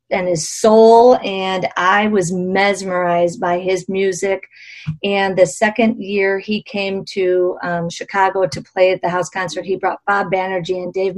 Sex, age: female, 40-59